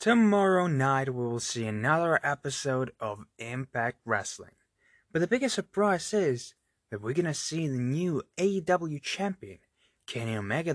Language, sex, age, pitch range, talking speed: English, male, 20-39, 115-175 Hz, 140 wpm